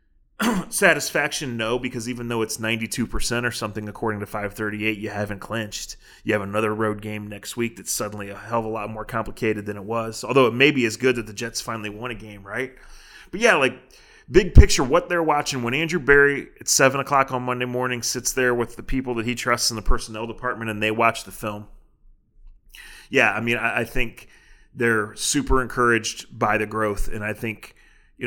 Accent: American